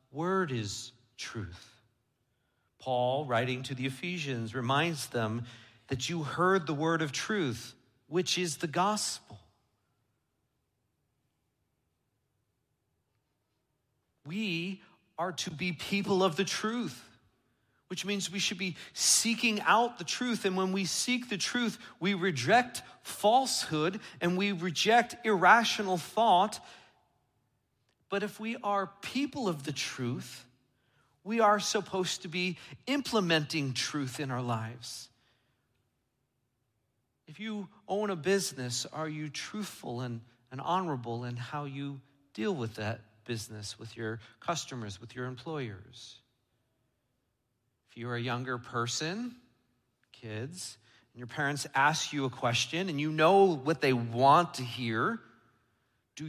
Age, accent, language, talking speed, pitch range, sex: 40-59, American, English, 125 wpm, 120-185 Hz, male